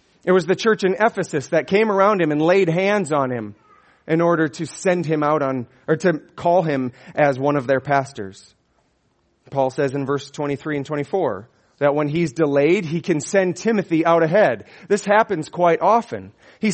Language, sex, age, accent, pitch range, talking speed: English, male, 30-49, American, 135-180 Hz, 190 wpm